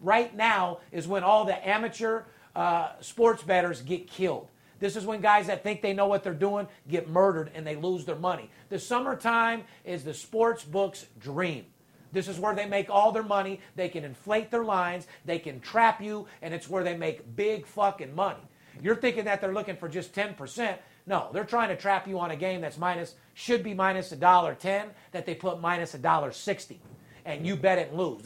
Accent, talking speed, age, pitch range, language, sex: American, 205 wpm, 40-59, 165-210 Hz, English, male